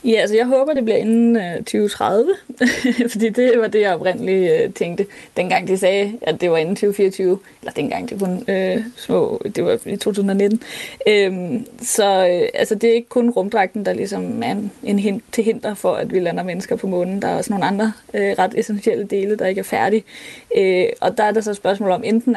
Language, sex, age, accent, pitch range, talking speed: Danish, female, 20-39, native, 195-245 Hz, 215 wpm